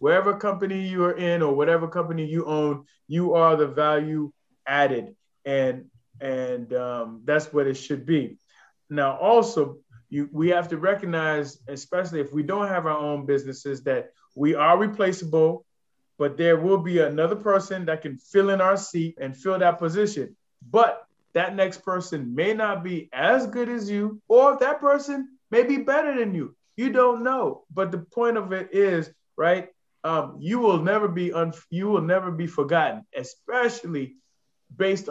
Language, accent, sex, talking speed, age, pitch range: English, American, male, 175 wpm, 20-39, 150-195 Hz